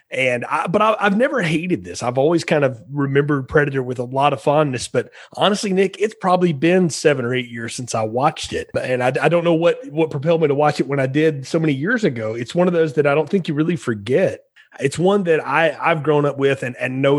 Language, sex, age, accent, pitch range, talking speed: English, male, 30-49, American, 125-170 Hz, 255 wpm